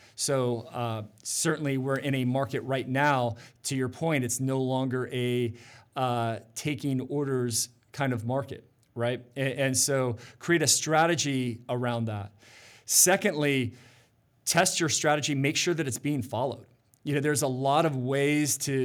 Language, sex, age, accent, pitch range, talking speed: English, male, 40-59, American, 120-145 Hz, 155 wpm